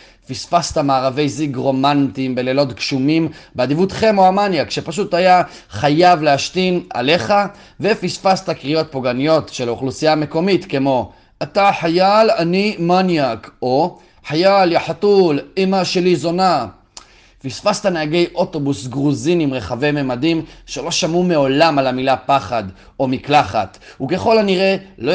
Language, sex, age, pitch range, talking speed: Hebrew, male, 30-49, 135-170 Hz, 115 wpm